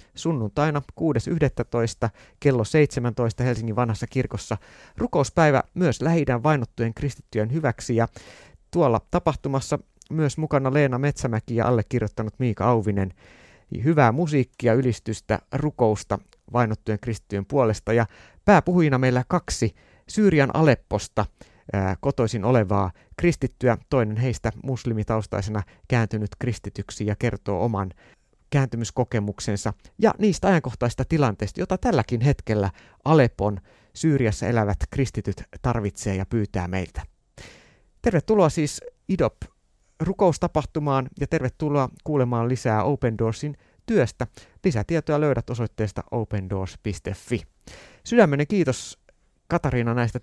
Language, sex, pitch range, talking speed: Finnish, male, 105-140 Hz, 100 wpm